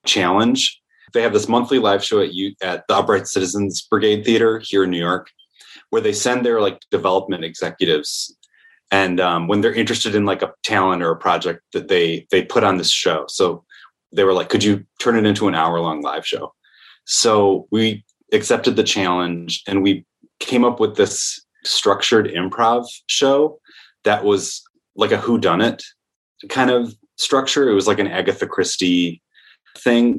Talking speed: 175 wpm